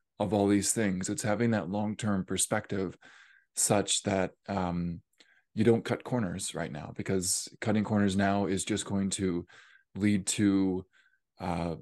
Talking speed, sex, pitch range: 145 wpm, male, 100-115 Hz